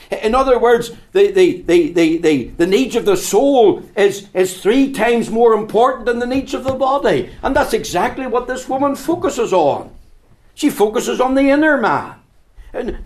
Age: 60-79